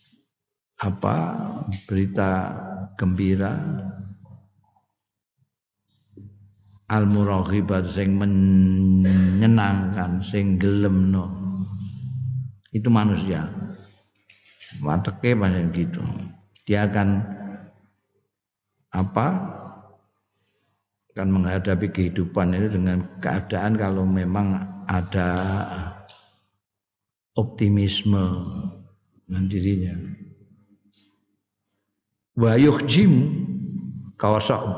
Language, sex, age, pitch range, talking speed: Indonesian, male, 50-69, 100-115 Hz, 55 wpm